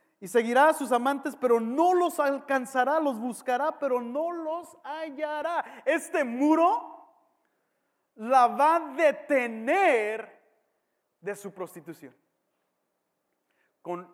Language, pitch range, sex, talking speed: English, 210-275 Hz, male, 105 wpm